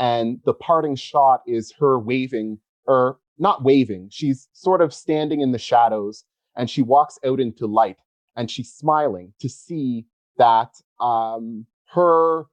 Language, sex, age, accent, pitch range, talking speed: English, male, 30-49, American, 110-140 Hz, 150 wpm